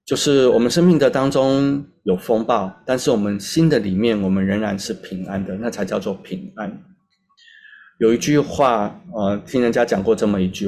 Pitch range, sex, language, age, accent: 100-155 Hz, male, Chinese, 30-49, native